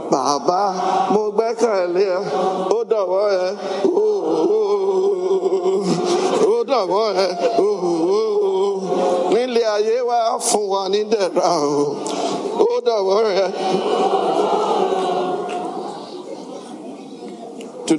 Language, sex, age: English, male, 60-79